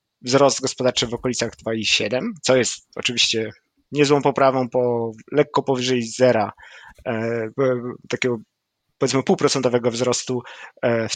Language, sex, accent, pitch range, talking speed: Polish, male, native, 120-140 Hz, 100 wpm